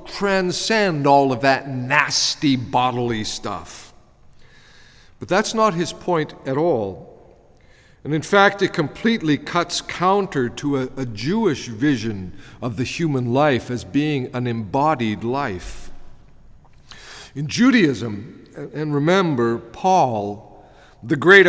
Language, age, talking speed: English, 50-69, 115 wpm